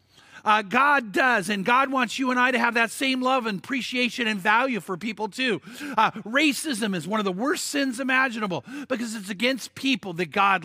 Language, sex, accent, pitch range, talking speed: English, male, American, 160-235 Hz, 205 wpm